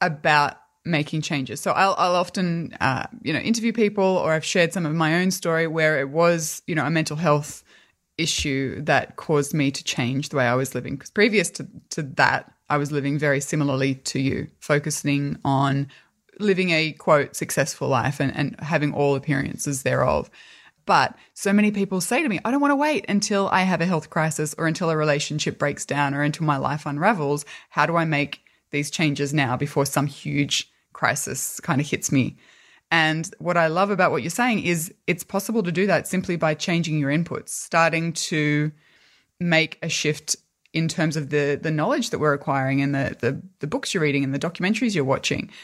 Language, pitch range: English, 145-180 Hz